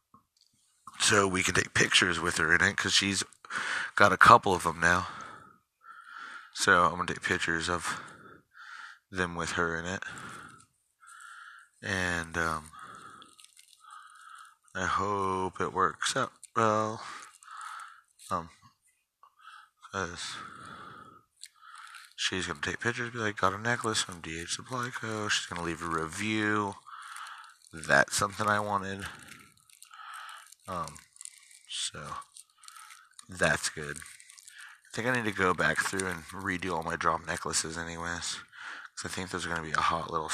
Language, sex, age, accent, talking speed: English, male, 30-49, American, 135 wpm